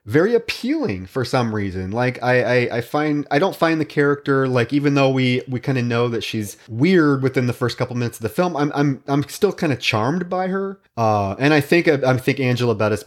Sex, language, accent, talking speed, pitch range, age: male, English, American, 235 wpm, 105-140 Hz, 30-49